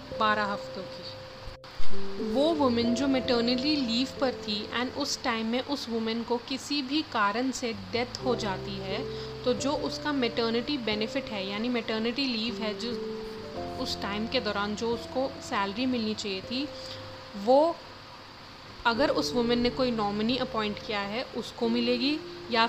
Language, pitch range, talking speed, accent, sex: Hindi, 220-265 Hz, 155 wpm, native, female